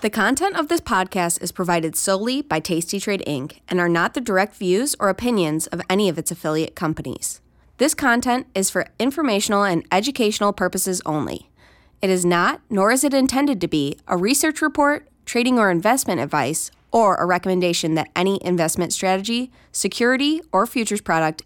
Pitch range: 165-220 Hz